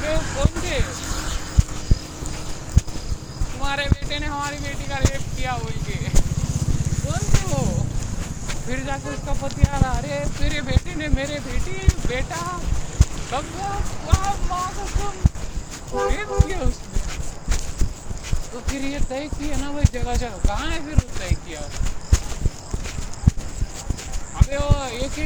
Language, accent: Marathi, native